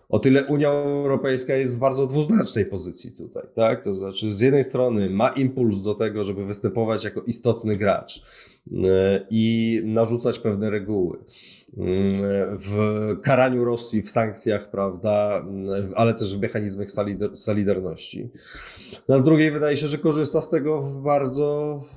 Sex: male